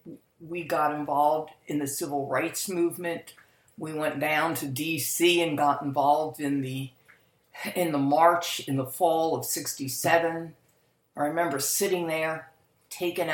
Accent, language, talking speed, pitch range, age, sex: American, English, 140 wpm, 130-165 Hz, 50-69, female